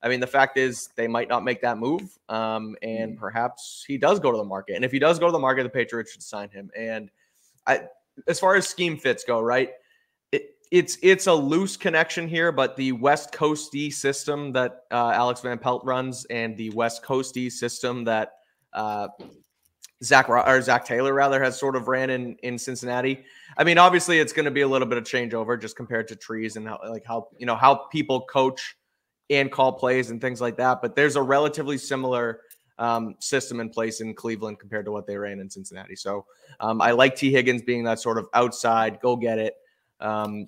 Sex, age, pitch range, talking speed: male, 20-39, 110-135 Hz, 215 wpm